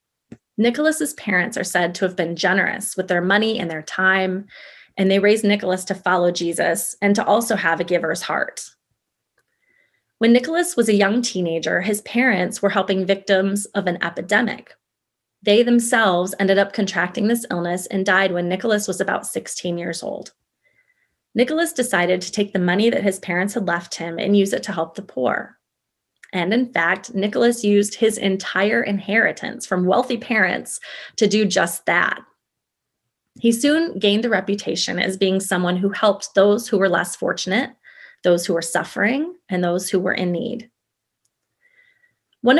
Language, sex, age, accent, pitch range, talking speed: English, female, 30-49, American, 185-225 Hz, 165 wpm